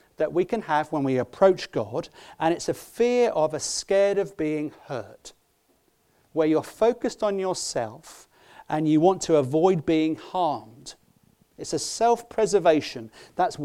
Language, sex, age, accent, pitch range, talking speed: English, male, 40-59, British, 155-205 Hz, 150 wpm